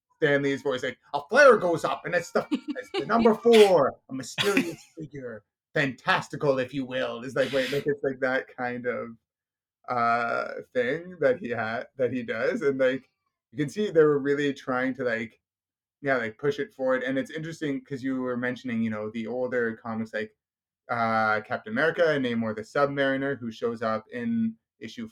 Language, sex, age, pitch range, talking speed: English, male, 30-49, 115-155 Hz, 185 wpm